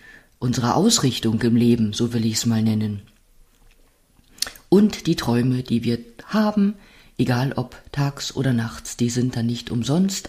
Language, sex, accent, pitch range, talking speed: German, female, German, 120-140 Hz, 150 wpm